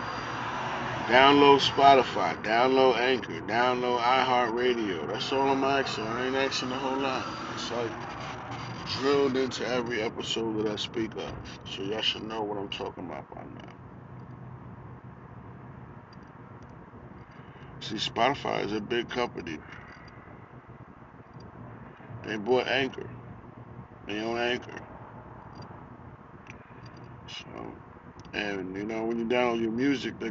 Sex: male